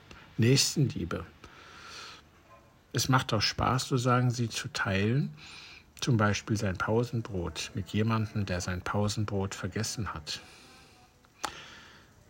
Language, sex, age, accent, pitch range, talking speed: German, male, 60-79, German, 100-135 Hz, 100 wpm